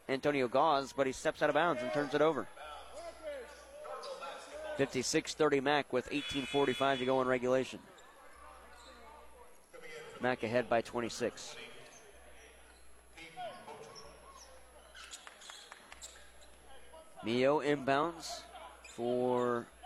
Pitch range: 130-170 Hz